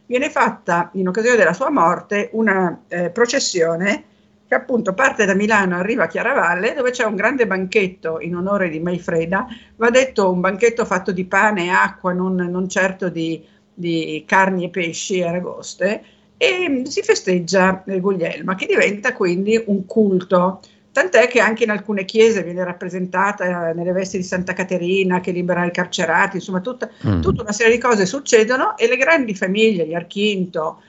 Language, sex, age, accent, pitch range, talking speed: Italian, female, 50-69, native, 180-225 Hz, 165 wpm